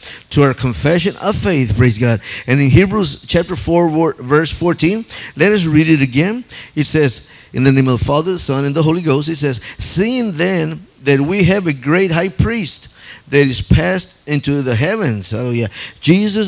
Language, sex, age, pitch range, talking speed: English, male, 50-69, 130-175 Hz, 195 wpm